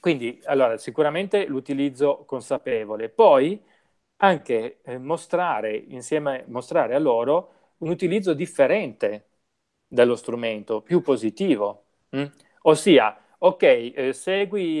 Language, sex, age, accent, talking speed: Italian, male, 30-49, native, 105 wpm